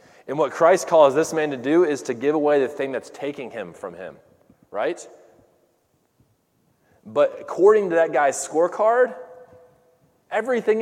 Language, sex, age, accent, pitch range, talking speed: English, male, 20-39, American, 130-215 Hz, 150 wpm